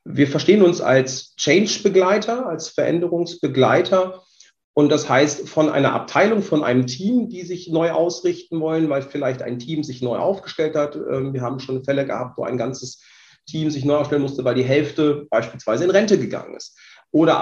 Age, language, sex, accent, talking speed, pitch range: 40-59, German, male, German, 175 wpm, 130-165 Hz